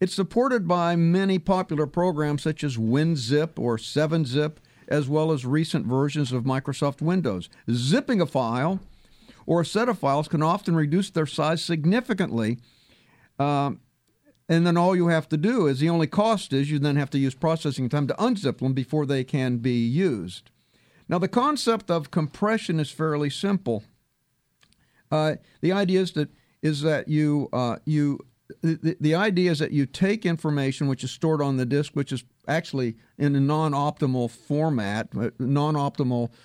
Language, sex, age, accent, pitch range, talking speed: English, male, 50-69, American, 135-170 Hz, 165 wpm